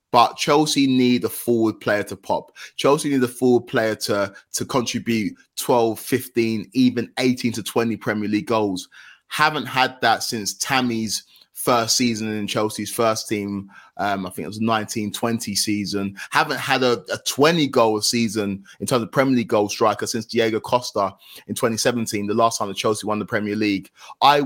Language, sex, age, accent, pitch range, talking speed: English, male, 20-39, British, 105-120 Hz, 175 wpm